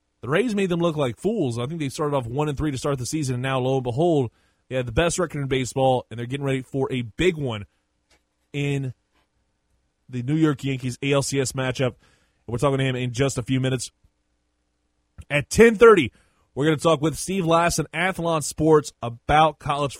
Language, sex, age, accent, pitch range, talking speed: English, male, 20-39, American, 130-165 Hz, 205 wpm